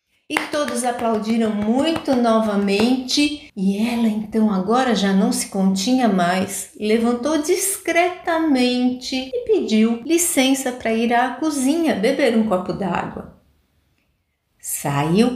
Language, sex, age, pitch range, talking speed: Portuguese, female, 60-79, 190-300 Hz, 110 wpm